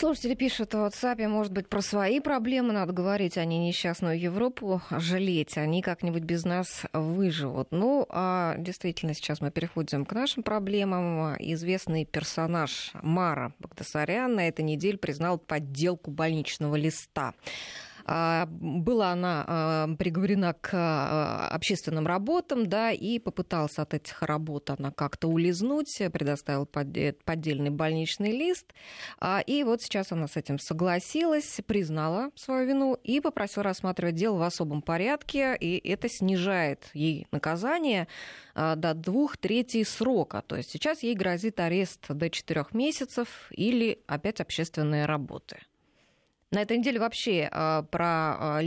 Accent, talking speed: native, 130 wpm